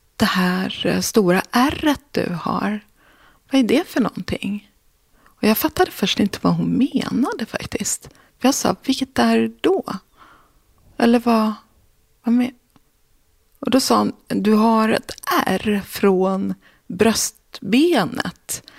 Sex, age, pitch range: female, 30-49, 190-255 Hz